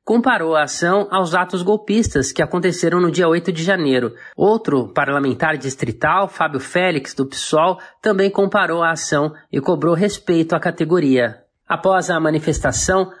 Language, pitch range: Portuguese, 155-200 Hz